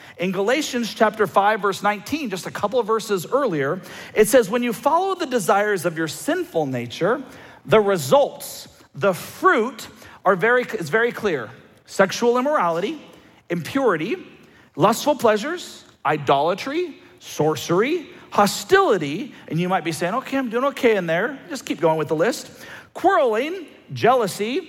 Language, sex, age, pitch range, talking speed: English, male, 40-59, 200-285 Hz, 145 wpm